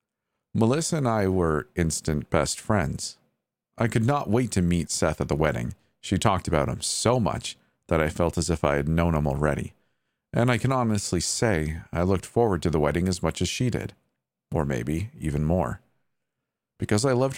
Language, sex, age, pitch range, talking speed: English, male, 40-59, 80-100 Hz, 195 wpm